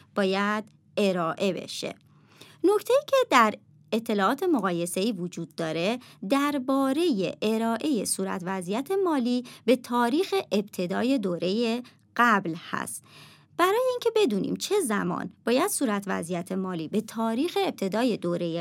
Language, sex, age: Persian, male, 30-49